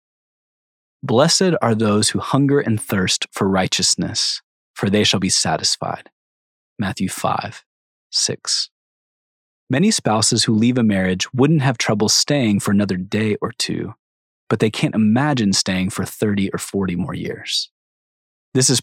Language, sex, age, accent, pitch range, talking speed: English, male, 20-39, American, 95-125 Hz, 145 wpm